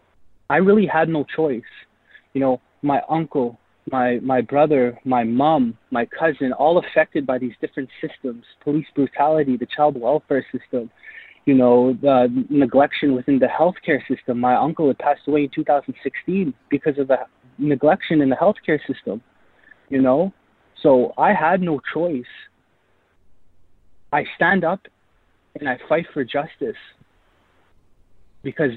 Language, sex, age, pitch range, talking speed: English, male, 20-39, 120-145 Hz, 145 wpm